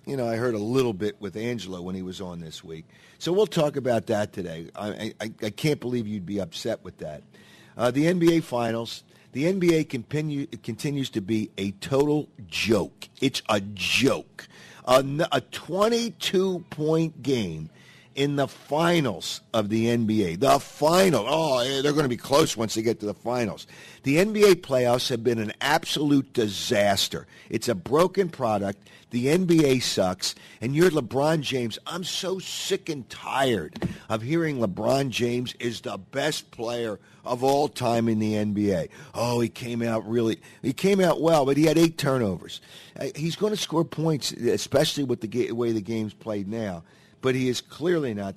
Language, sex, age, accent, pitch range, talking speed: English, male, 50-69, American, 100-145 Hz, 175 wpm